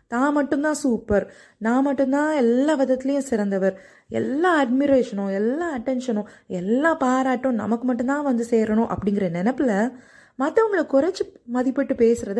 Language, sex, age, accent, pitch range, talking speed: Tamil, female, 20-39, native, 210-280 Hz, 115 wpm